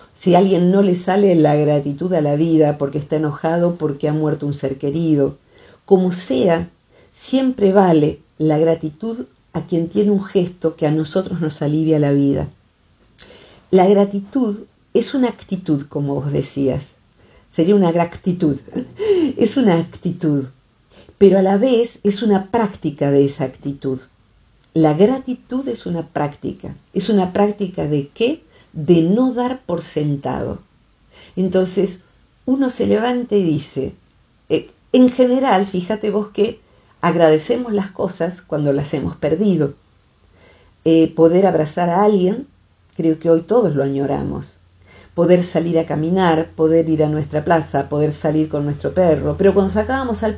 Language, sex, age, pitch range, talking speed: Spanish, female, 50-69, 145-200 Hz, 150 wpm